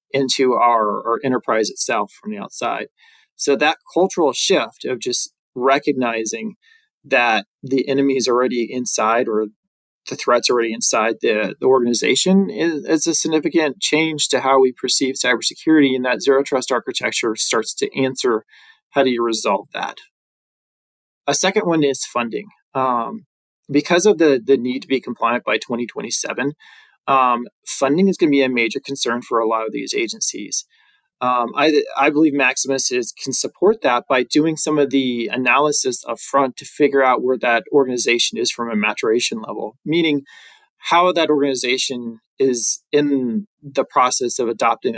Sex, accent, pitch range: male, American, 125-160 Hz